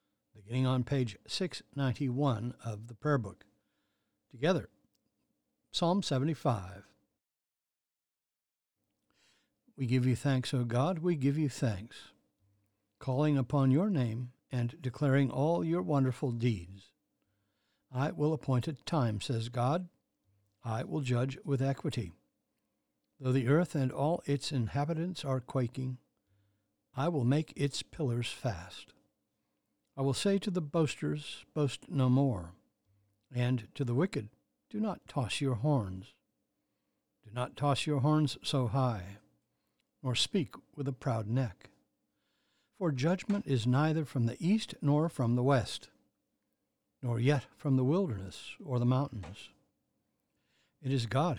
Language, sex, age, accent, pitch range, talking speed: English, male, 60-79, American, 120-150 Hz, 130 wpm